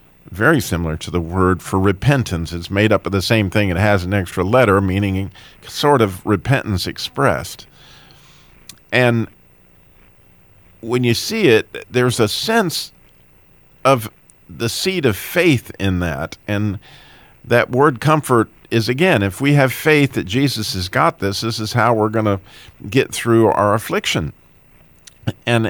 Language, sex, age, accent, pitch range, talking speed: English, male, 50-69, American, 95-125 Hz, 150 wpm